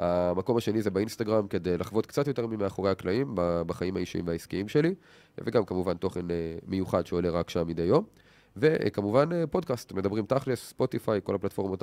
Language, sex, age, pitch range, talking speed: Hebrew, male, 30-49, 90-115 Hz, 155 wpm